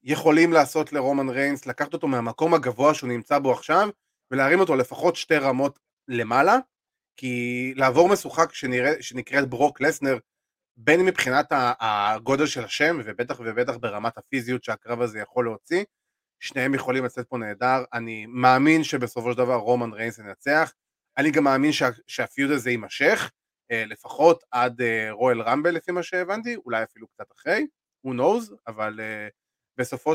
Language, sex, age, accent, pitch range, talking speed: Hebrew, male, 20-39, native, 120-165 Hz, 145 wpm